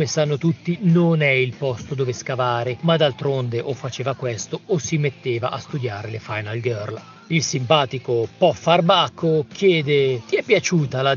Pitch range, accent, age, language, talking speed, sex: 130-160 Hz, native, 40-59, Italian, 165 wpm, male